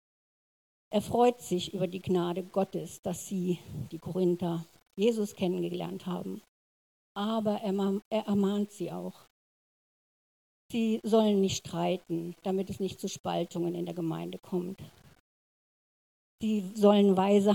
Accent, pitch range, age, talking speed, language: German, 175-215 Hz, 60-79, 125 wpm, German